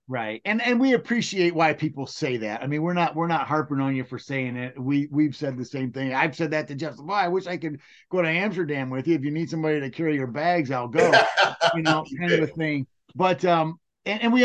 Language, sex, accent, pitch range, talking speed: English, male, American, 140-175 Hz, 260 wpm